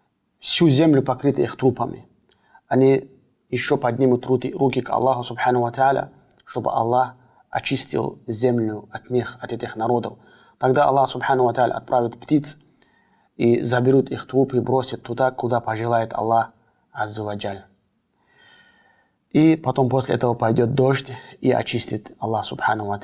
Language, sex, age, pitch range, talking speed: Russian, male, 30-49, 110-125 Hz, 110 wpm